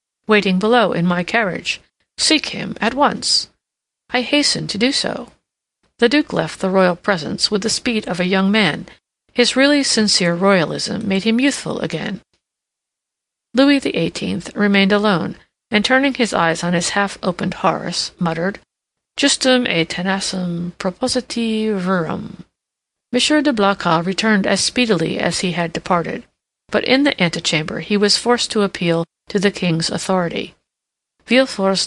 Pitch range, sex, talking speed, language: 185-230 Hz, female, 145 wpm, English